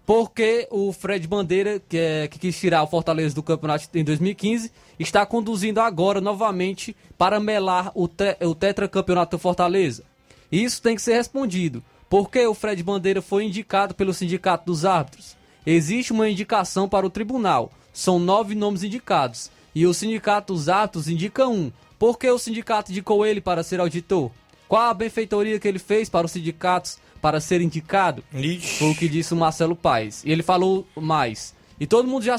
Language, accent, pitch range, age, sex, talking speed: Portuguese, Brazilian, 170-210 Hz, 20-39, male, 180 wpm